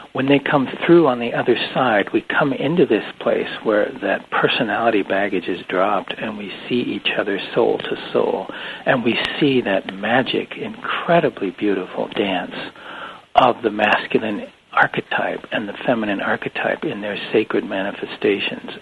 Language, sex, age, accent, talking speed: English, male, 60-79, American, 150 wpm